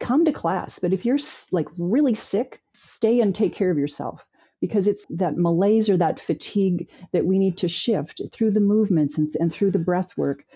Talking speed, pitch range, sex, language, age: 205 wpm, 170-215 Hz, female, English, 40-59